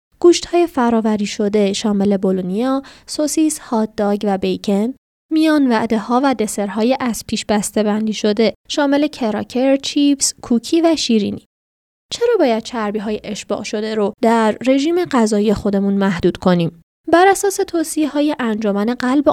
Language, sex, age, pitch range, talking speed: Persian, female, 20-39, 210-260 Hz, 145 wpm